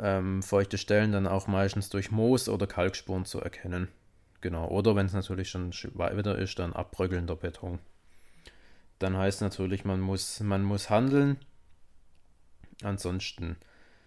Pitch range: 95-110 Hz